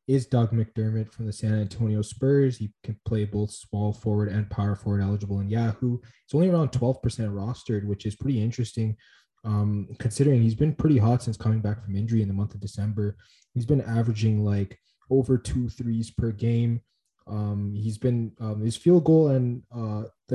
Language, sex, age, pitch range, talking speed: English, male, 20-39, 105-120 Hz, 190 wpm